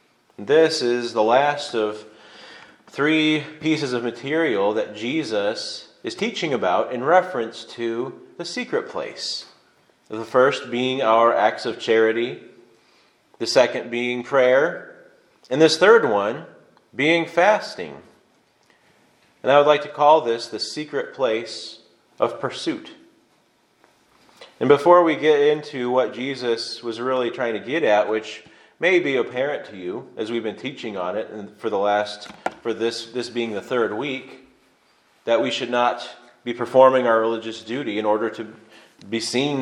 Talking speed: 150 wpm